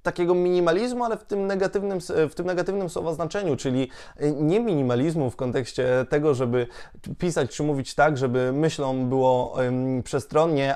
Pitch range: 135-170 Hz